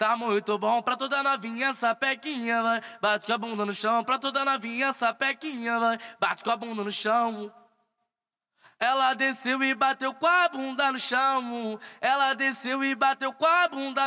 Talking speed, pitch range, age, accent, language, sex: 175 wpm, 210-270 Hz, 20-39, Brazilian, English, male